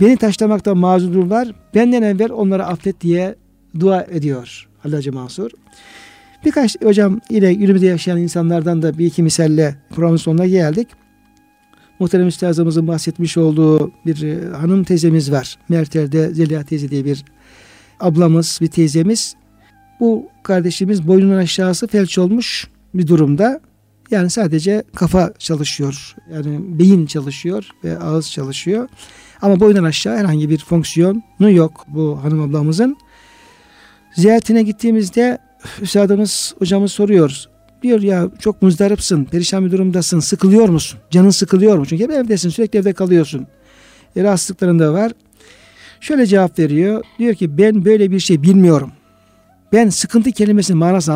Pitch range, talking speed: 160-205 Hz, 125 wpm